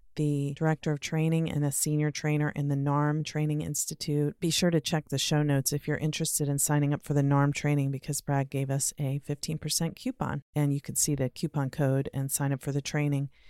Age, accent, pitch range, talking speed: 40-59, American, 150-180 Hz, 220 wpm